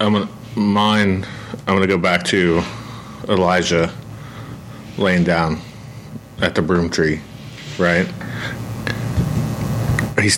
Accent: American